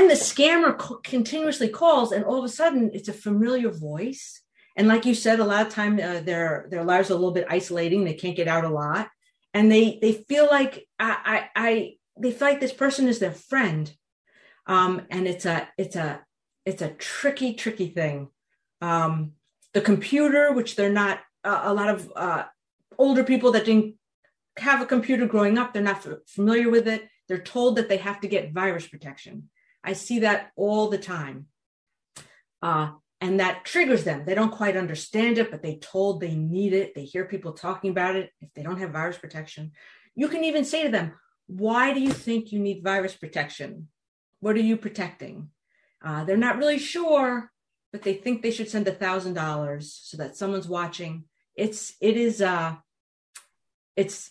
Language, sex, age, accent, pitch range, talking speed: English, female, 40-59, American, 175-230 Hz, 190 wpm